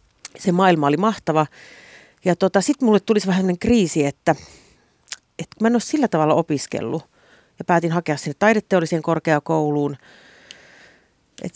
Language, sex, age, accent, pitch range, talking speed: Finnish, female, 40-59, native, 150-190 Hz, 135 wpm